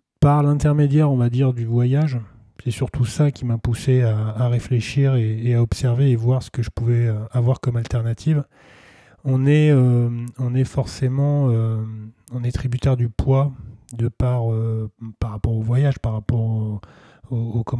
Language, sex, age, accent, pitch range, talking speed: French, male, 20-39, French, 115-135 Hz, 150 wpm